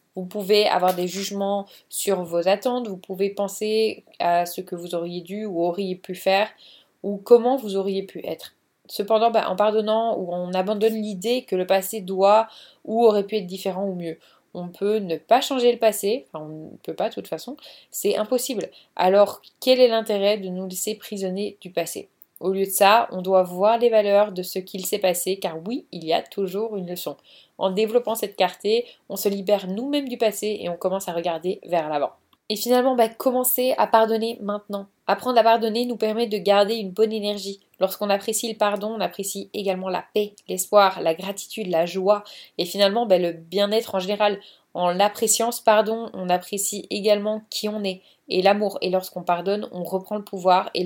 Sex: female